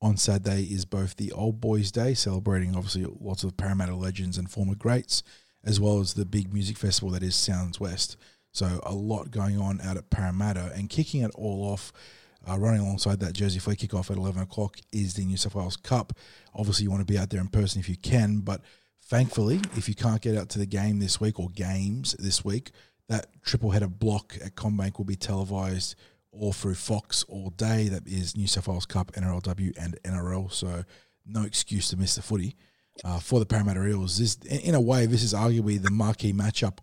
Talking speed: 210 wpm